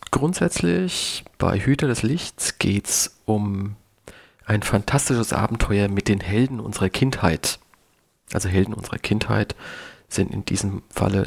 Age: 40-59